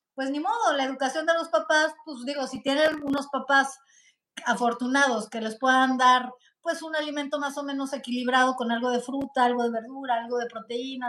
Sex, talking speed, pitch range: female, 195 wpm, 225-285 Hz